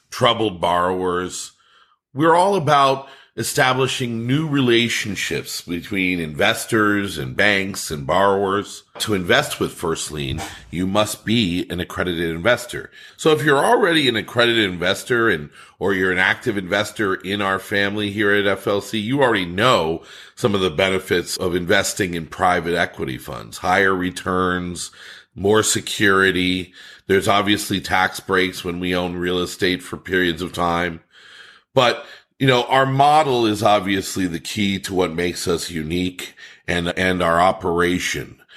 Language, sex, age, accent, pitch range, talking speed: English, male, 40-59, American, 90-115 Hz, 140 wpm